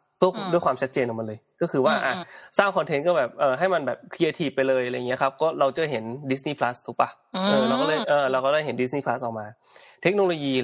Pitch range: 120-145 Hz